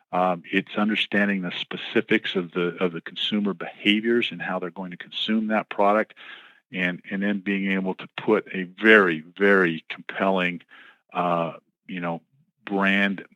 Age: 50-69